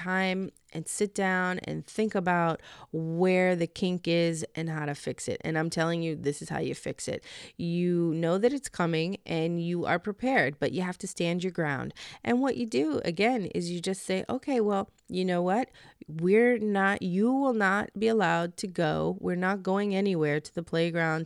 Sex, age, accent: female, 30-49, American